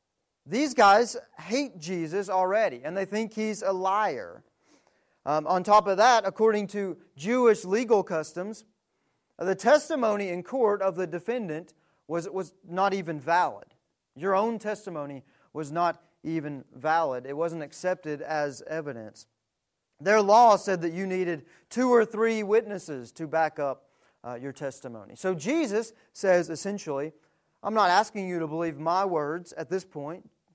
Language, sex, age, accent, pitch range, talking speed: English, male, 40-59, American, 150-195 Hz, 150 wpm